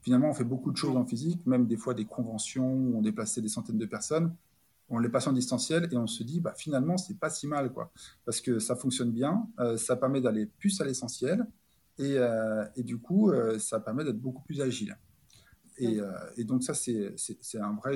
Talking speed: 235 wpm